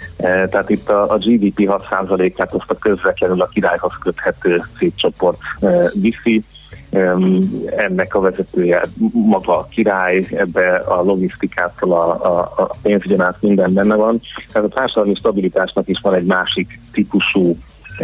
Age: 30-49